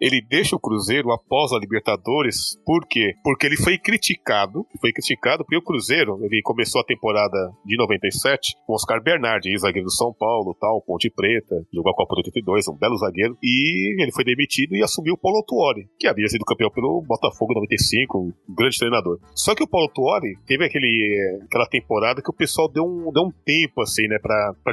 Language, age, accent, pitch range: Portuguese, 40-59, Brazilian, 110-165 Hz